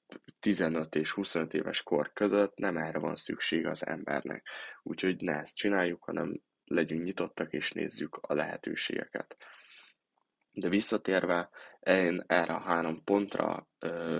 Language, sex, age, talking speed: Hungarian, male, 10-29, 125 wpm